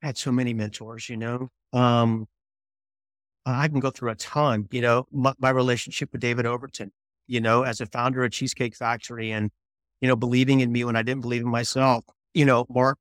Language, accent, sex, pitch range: English, American, male, 115-130 Hz